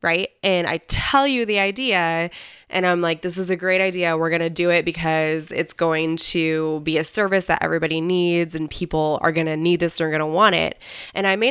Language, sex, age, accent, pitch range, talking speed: English, female, 20-39, American, 160-185 Hz, 235 wpm